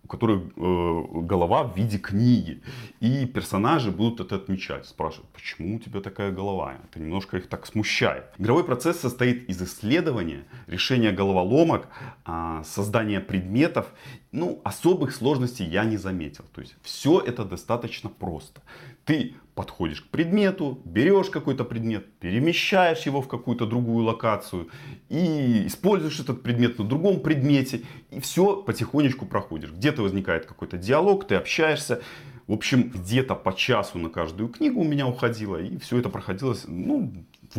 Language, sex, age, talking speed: Russian, male, 30-49, 145 wpm